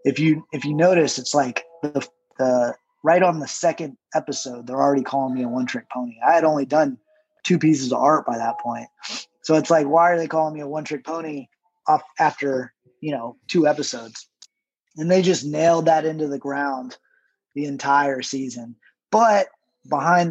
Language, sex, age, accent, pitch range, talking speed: English, male, 20-39, American, 140-170 Hz, 180 wpm